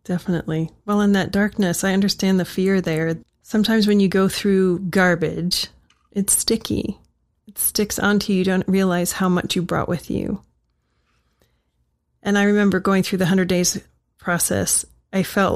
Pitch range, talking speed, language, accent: 175-200 Hz, 160 wpm, English, American